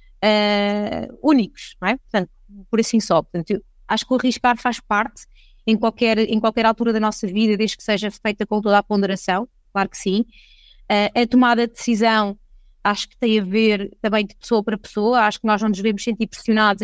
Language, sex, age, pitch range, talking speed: Portuguese, female, 20-39, 210-245 Hz, 205 wpm